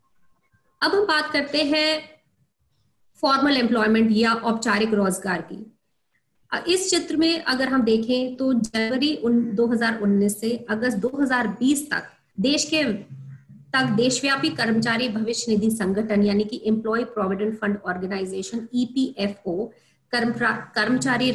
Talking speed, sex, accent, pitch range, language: 115 wpm, female, Indian, 210-255 Hz, English